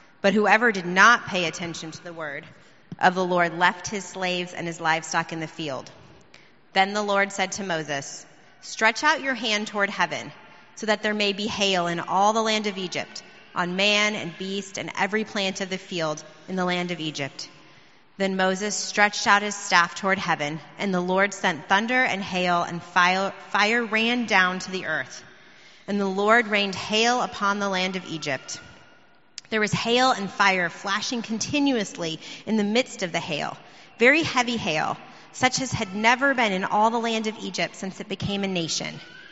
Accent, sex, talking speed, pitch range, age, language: American, female, 190 wpm, 175-215 Hz, 30-49, English